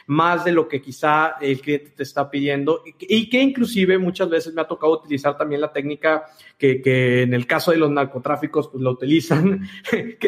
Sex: male